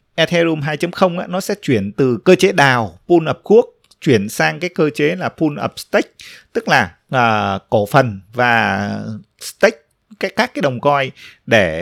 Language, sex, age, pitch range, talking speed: Vietnamese, male, 20-39, 120-160 Hz, 180 wpm